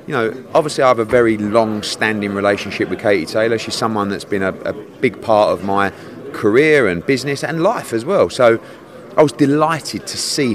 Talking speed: 200 wpm